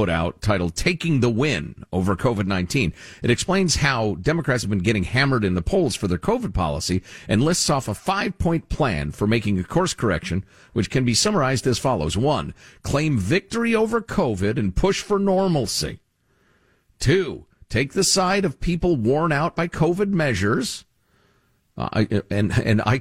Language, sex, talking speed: English, male, 165 wpm